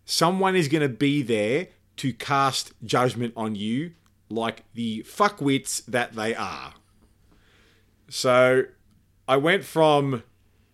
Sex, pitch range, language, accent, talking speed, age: male, 100-155 Hz, English, Australian, 115 wpm, 30-49